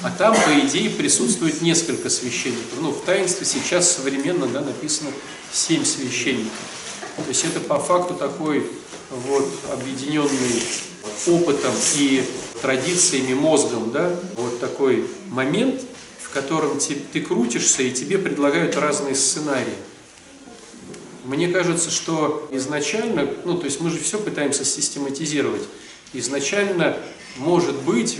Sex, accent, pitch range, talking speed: male, native, 145-215 Hz, 115 wpm